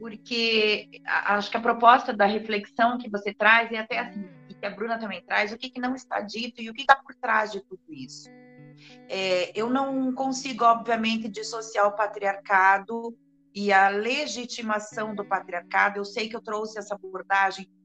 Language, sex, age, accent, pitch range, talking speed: Portuguese, female, 40-59, Brazilian, 200-250 Hz, 180 wpm